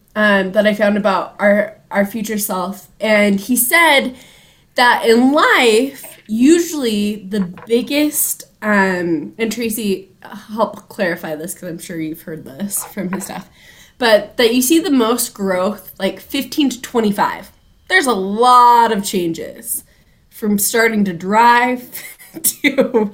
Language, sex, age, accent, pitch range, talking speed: English, female, 20-39, American, 195-240 Hz, 140 wpm